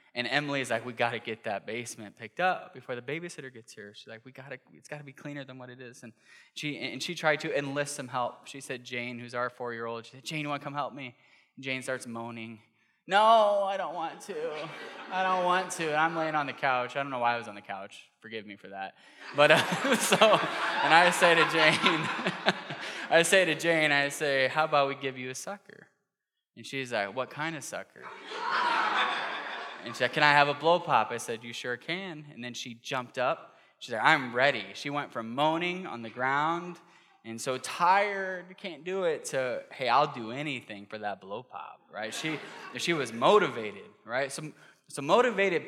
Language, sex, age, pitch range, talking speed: English, male, 10-29, 120-160 Hz, 215 wpm